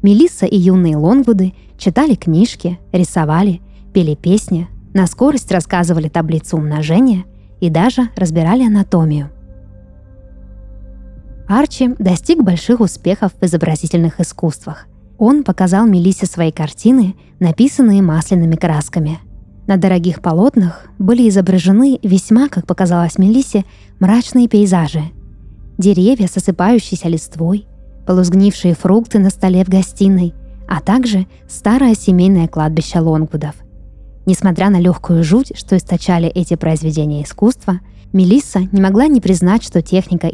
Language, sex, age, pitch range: Russian, female, 20-39, 165-205 Hz